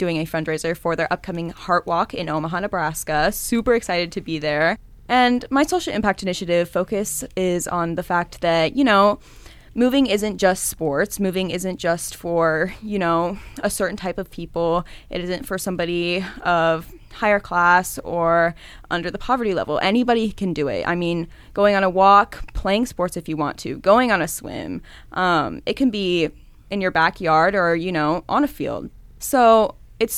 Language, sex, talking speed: English, female, 180 wpm